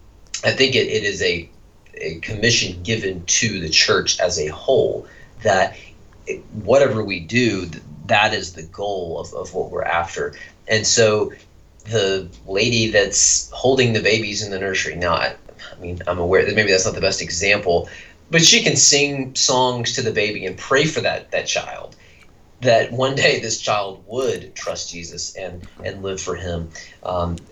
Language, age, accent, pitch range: English, 30-49, American, 95-120 Hz